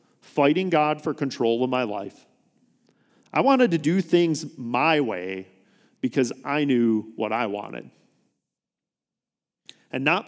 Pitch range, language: 125-165 Hz, English